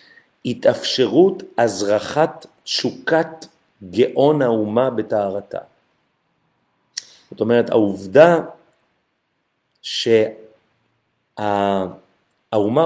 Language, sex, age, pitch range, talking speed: Hebrew, male, 40-59, 110-140 Hz, 45 wpm